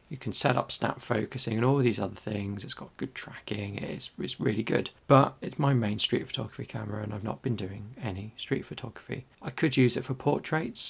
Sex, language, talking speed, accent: male, English, 220 wpm, British